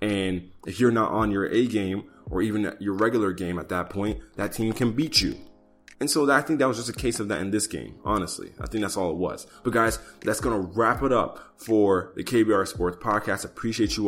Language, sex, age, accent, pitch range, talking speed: English, male, 20-39, American, 95-110 Hz, 245 wpm